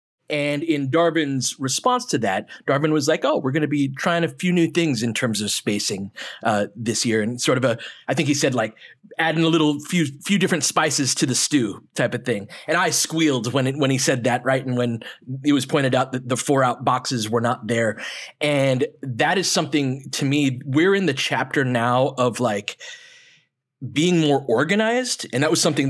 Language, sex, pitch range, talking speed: English, male, 125-155 Hz, 210 wpm